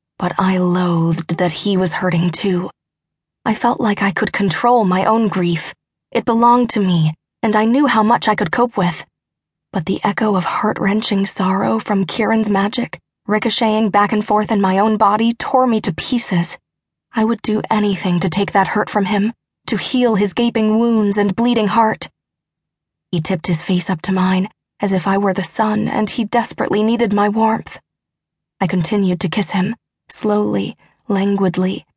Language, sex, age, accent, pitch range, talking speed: English, female, 20-39, American, 180-215 Hz, 180 wpm